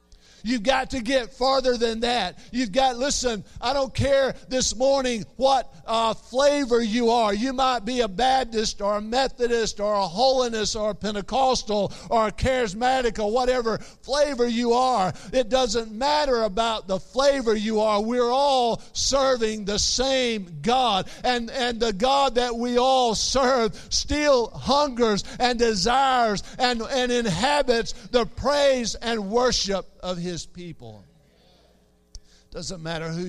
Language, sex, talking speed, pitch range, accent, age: English, male, 145 wpm, 165-245 Hz, American, 50-69